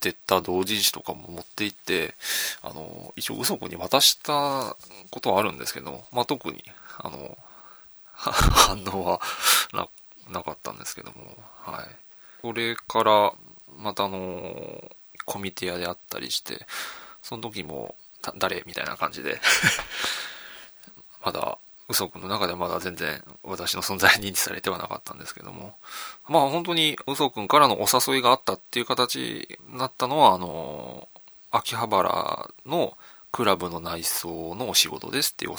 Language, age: Japanese, 20-39